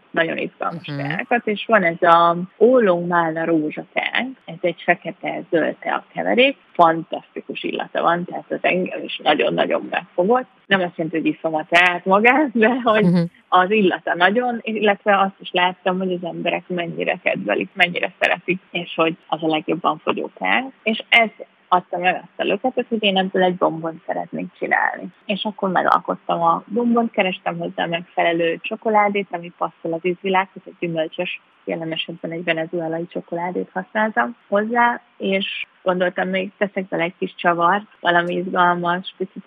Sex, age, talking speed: female, 30-49, 155 wpm